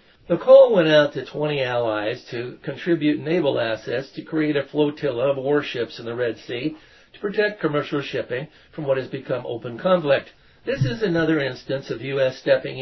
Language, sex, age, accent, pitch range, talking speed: English, male, 60-79, American, 130-170 Hz, 180 wpm